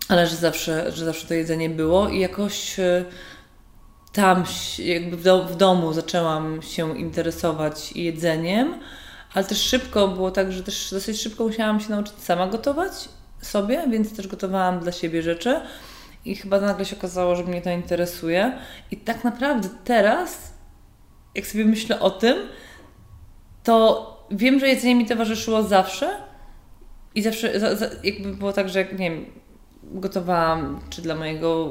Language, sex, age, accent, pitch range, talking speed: Polish, female, 20-39, native, 165-200 Hz, 150 wpm